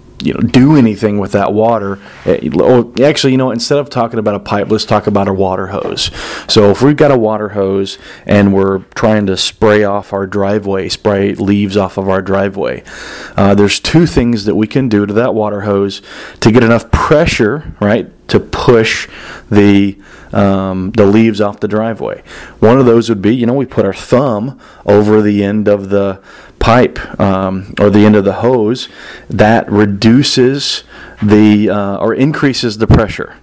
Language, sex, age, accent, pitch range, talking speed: English, male, 30-49, American, 100-115 Hz, 180 wpm